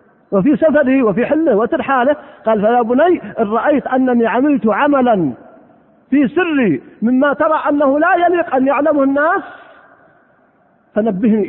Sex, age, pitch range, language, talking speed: male, 50-69, 215-295 Hz, Arabic, 125 wpm